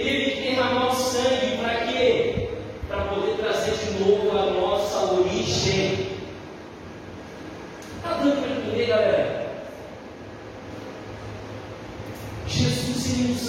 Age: 20-39